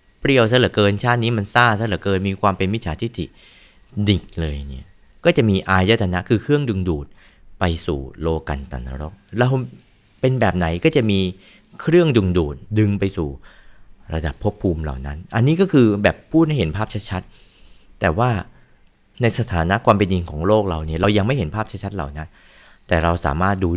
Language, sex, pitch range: Thai, male, 80-110 Hz